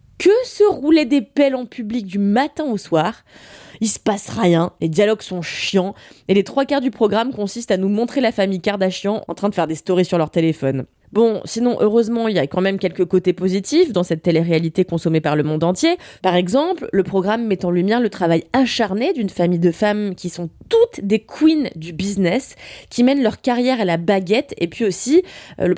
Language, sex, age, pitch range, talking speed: French, female, 20-39, 175-240 Hz, 215 wpm